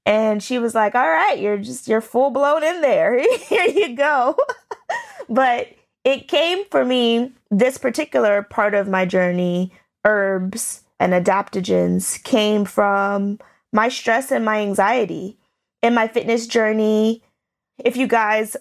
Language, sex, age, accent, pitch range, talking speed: English, female, 20-39, American, 190-245 Hz, 140 wpm